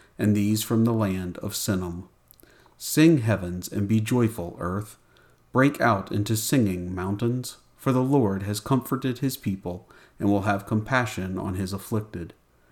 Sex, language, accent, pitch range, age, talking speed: male, English, American, 95-125 Hz, 50-69, 150 wpm